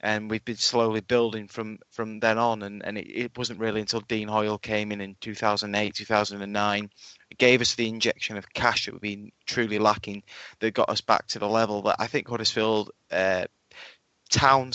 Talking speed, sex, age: 190 wpm, male, 20-39